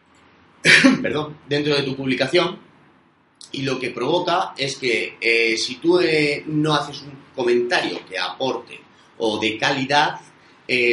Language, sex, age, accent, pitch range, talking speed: Spanish, male, 30-49, Spanish, 120-155 Hz, 135 wpm